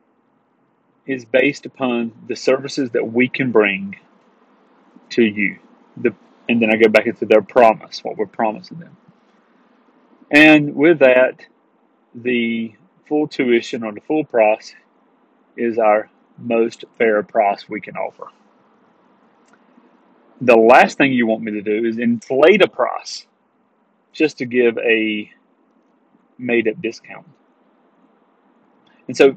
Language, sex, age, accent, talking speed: English, male, 30-49, American, 125 wpm